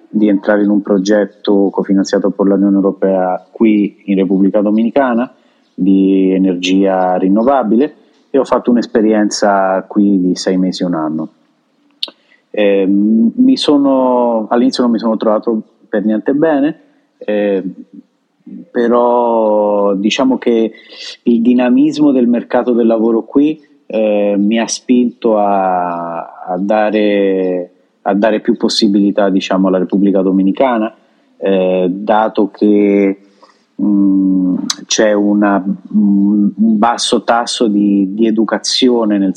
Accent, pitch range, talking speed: native, 95-115 Hz, 115 wpm